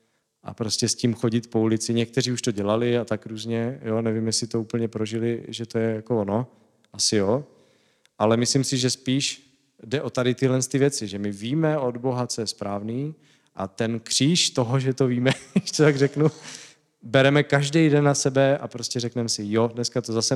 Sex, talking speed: male, 205 wpm